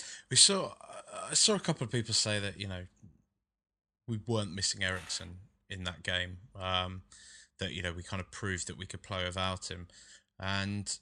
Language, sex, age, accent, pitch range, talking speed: English, male, 20-39, British, 95-115 Hz, 190 wpm